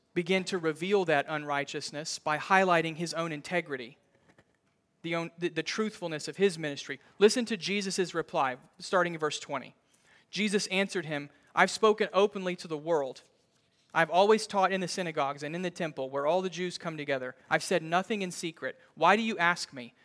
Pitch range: 160-200 Hz